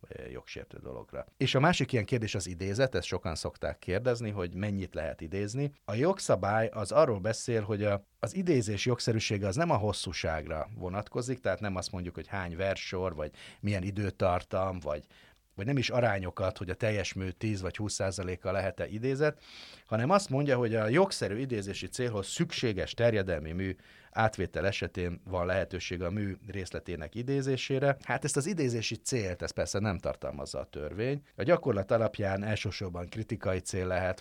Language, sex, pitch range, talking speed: Hungarian, male, 90-115 Hz, 165 wpm